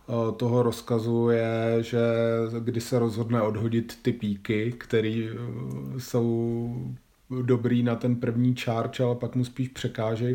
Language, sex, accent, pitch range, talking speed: Czech, male, native, 115-125 Hz, 130 wpm